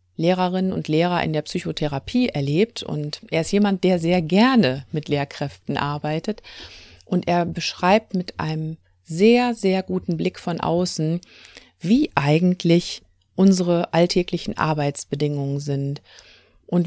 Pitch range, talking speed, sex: 145-185 Hz, 125 wpm, female